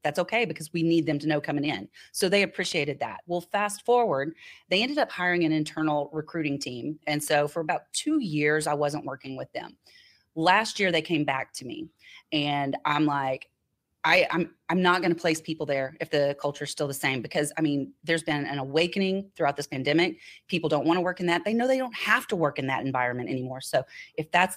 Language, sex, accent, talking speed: English, female, American, 225 wpm